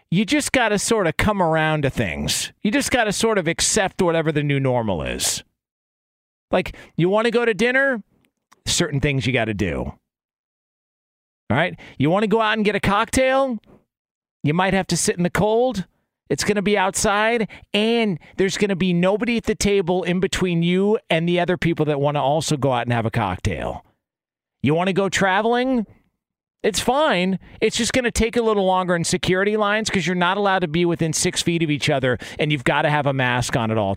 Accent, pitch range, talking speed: American, 145-210 Hz, 220 wpm